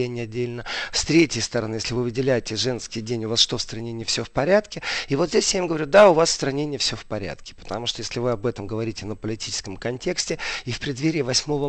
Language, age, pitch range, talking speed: Russian, 40-59, 110-145 Hz, 240 wpm